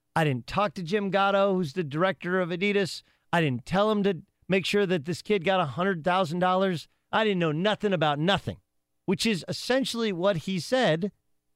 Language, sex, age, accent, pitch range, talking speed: English, male, 40-59, American, 110-175 Hz, 180 wpm